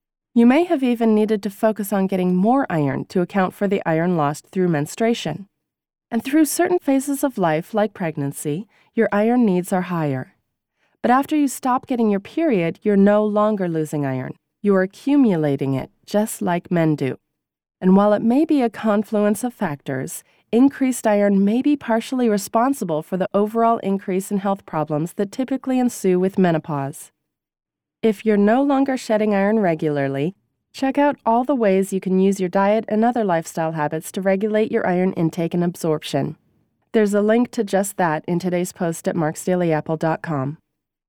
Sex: female